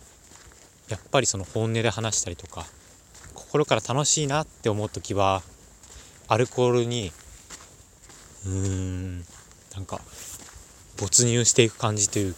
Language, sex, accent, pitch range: Japanese, male, native, 90-115 Hz